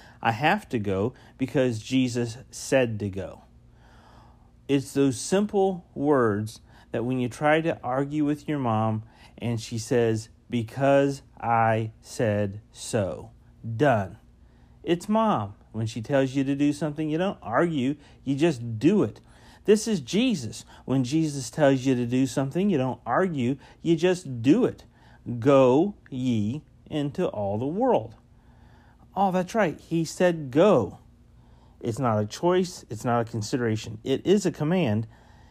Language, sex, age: English, male, 40-59